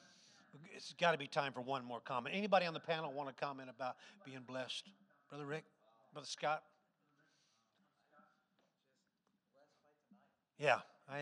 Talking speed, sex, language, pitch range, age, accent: 135 wpm, male, English, 155-225 Hz, 60-79, American